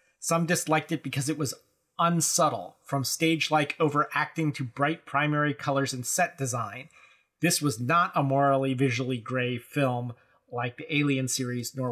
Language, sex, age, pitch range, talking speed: English, male, 30-49, 135-165 Hz, 150 wpm